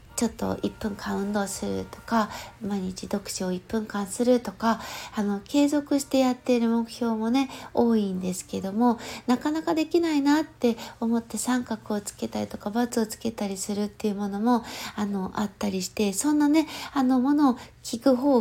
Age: 60-79